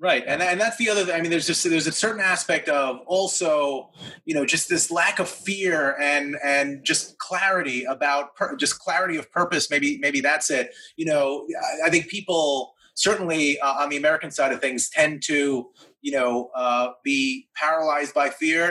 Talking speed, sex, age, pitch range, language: 195 wpm, male, 30-49, 140-175 Hz, English